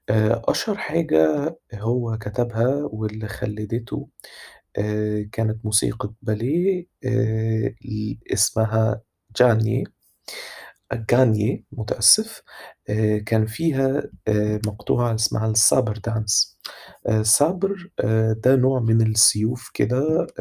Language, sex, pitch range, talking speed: Arabic, male, 105-120 Hz, 75 wpm